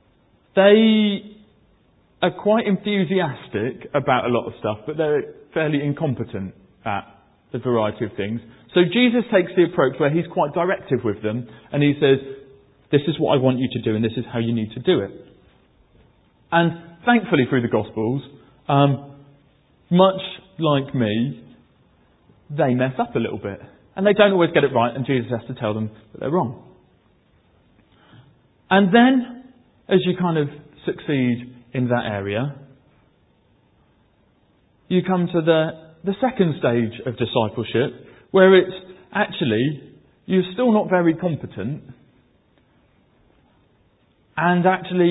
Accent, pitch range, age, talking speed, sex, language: British, 120-185 Hz, 30-49, 145 wpm, male, English